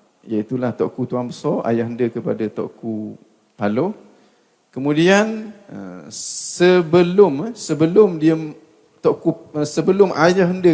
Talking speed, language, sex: 90 wpm, Malay, male